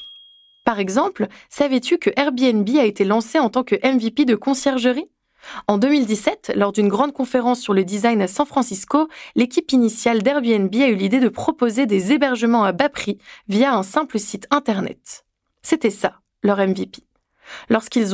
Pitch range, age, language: 200-275 Hz, 20-39, French